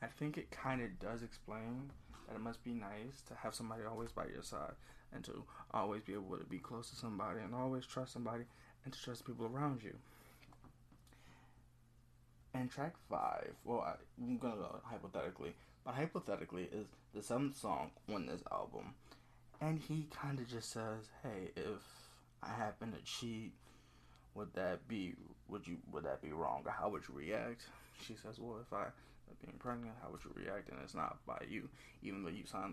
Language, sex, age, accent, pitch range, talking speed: English, male, 20-39, American, 115-130 Hz, 190 wpm